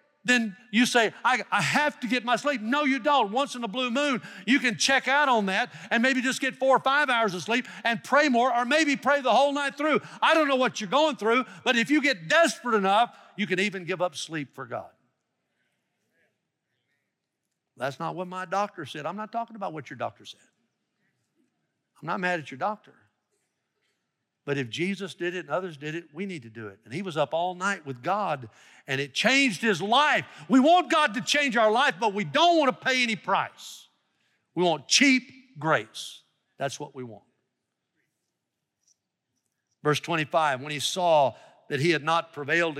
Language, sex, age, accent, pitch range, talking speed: English, male, 60-79, American, 150-250 Hz, 200 wpm